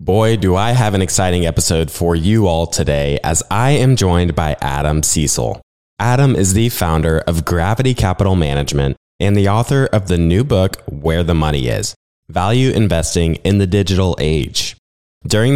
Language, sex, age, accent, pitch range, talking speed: English, male, 20-39, American, 80-110 Hz, 170 wpm